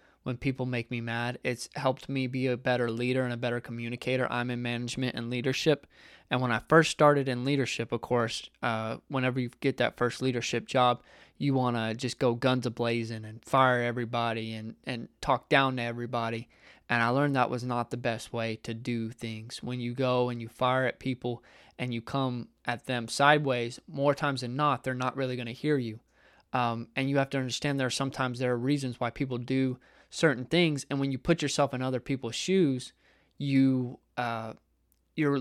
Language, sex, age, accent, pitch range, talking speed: English, male, 20-39, American, 120-135 Hz, 205 wpm